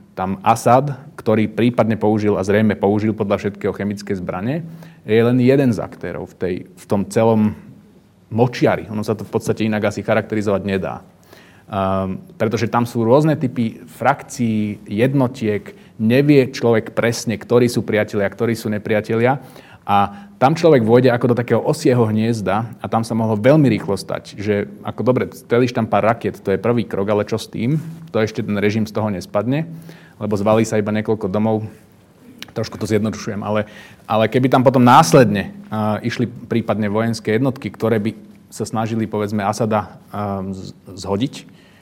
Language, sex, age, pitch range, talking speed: Slovak, male, 30-49, 105-120 Hz, 160 wpm